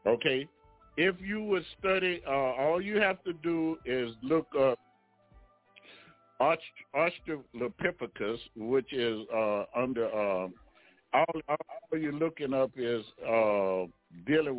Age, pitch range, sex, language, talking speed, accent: 60-79, 120-165 Hz, male, English, 115 wpm, American